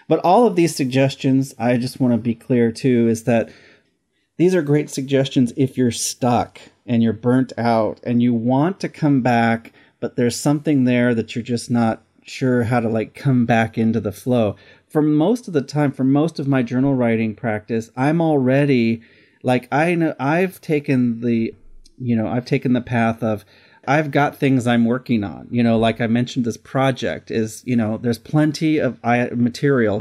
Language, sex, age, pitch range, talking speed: English, male, 30-49, 115-135 Hz, 190 wpm